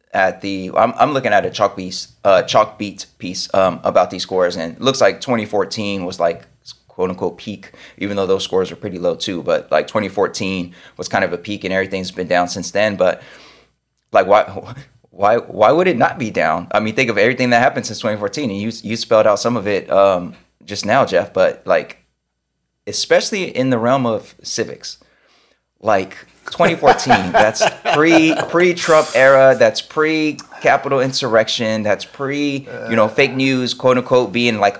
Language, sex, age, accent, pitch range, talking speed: English, male, 20-39, American, 95-125 Hz, 190 wpm